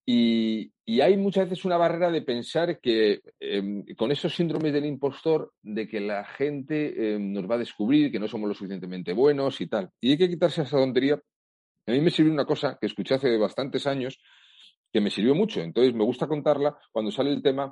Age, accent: 40-59, Spanish